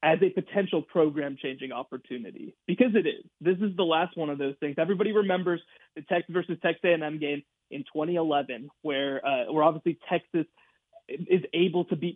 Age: 20-39